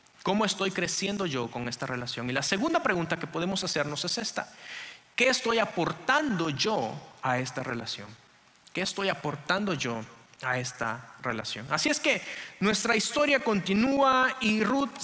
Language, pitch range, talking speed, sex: English, 155-215 Hz, 150 wpm, male